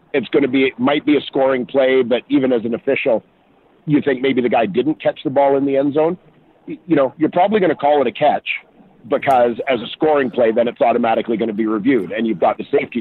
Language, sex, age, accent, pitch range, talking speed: English, male, 50-69, American, 120-165 Hz, 255 wpm